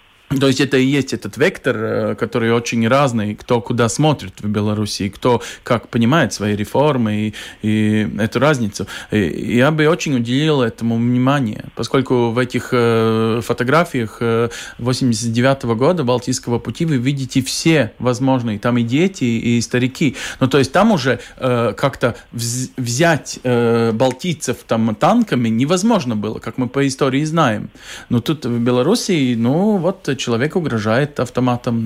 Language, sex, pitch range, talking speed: Russian, male, 115-135 Hz, 145 wpm